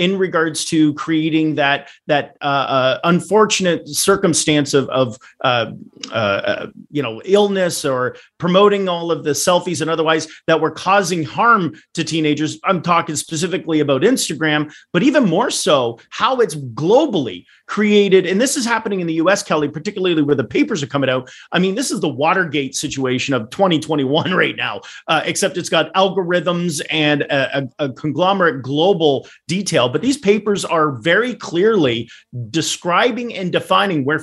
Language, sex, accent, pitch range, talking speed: English, male, American, 150-190 Hz, 160 wpm